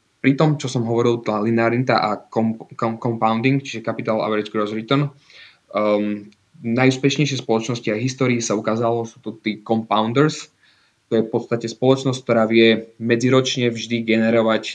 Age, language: 20-39, English